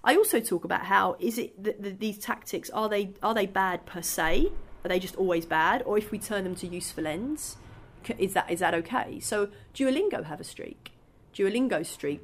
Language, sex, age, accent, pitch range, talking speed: English, female, 30-49, British, 170-215 Hz, 210 wpm